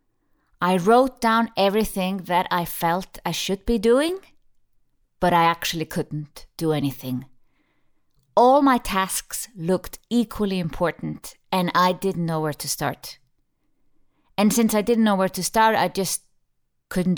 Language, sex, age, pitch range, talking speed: English, female, 30-49, 155-200 Hz, 145 wpm